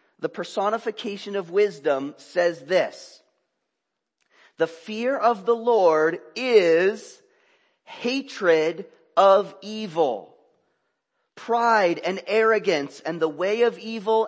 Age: 40-59